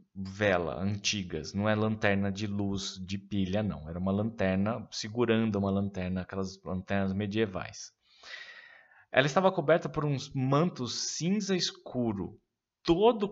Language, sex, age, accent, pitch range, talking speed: Portuguese, male, 20-39, Brazilian, 100-155 Hz, 125 wpm